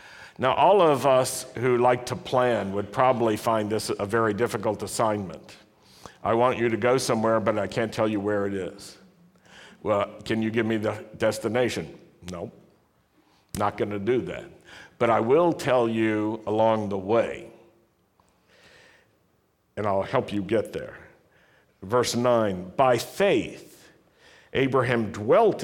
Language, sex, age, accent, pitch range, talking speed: English, male, 60-79, American, 105-130 Hz, 145 wpm